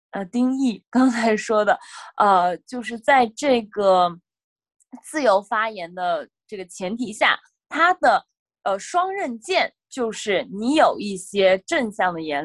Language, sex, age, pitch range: Chinese, female, 20-39, 195-295 Hz